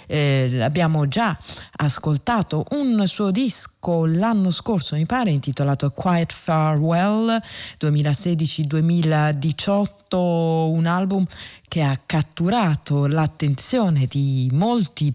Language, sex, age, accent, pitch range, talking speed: Italian, female, 30-49, native, 150-195 Hz, 90 wpm